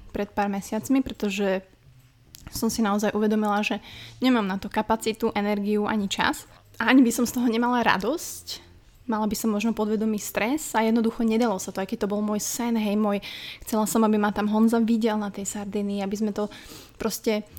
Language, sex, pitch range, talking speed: Slovak, female, 200-225 Hz, 190 wpm